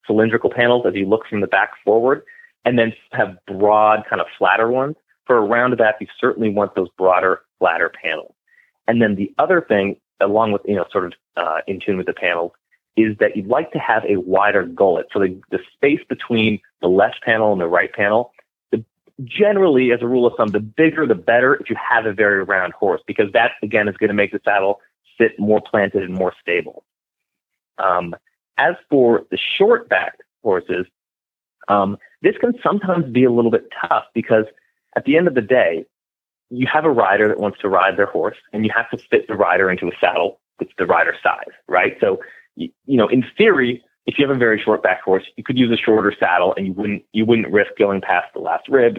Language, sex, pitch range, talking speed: English, male, 100-125 Hz, 215 wpm